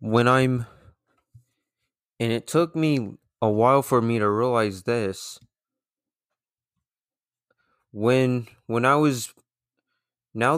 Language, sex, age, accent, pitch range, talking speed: English, male, 20-39, American, 110-130 Hz, 100 wpm